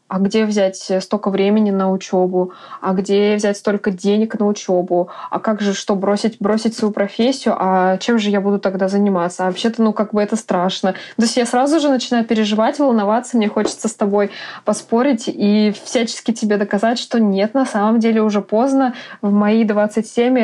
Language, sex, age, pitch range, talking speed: Russian, female, 20-39, 195-230 Hz, 185 wpm